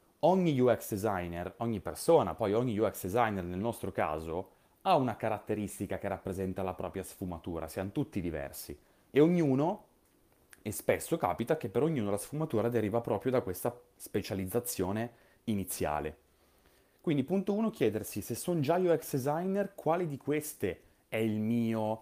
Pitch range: 100-125 Hz